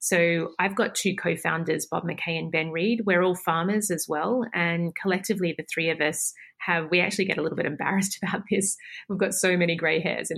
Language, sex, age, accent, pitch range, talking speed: English, female, 30-49, Australian, 170-195 Hz, 215 wpm